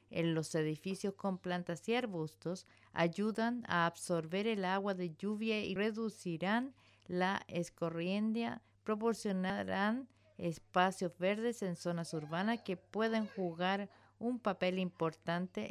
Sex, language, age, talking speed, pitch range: female, English, 50-69, 115 wpm, 170-215 Hz